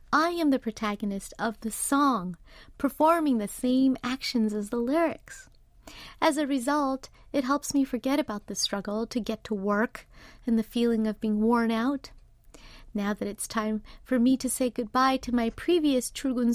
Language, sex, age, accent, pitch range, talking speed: English, female, 40-59, American, 215-265 Hz, 175 wpm